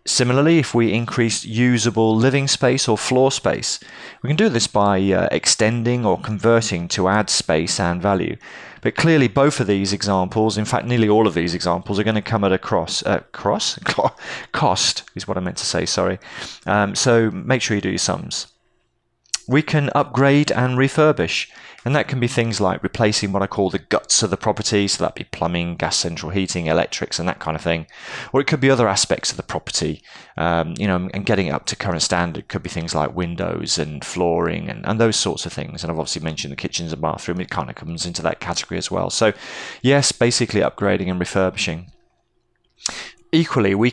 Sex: male